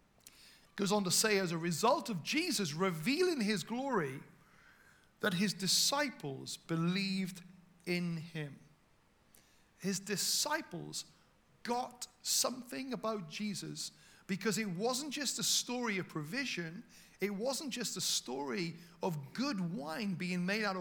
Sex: male